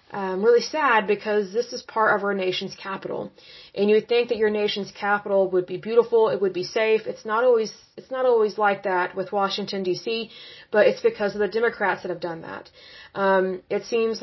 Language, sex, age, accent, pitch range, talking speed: English, female, 20-39, American, 195-215 Hz, 210 wpm